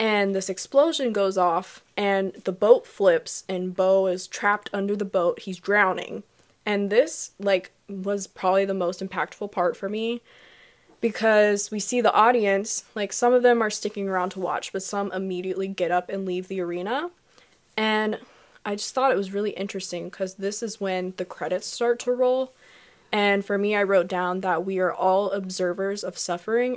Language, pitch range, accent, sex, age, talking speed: English, 185-210 Hz, American, female, 20-39, 185 wpm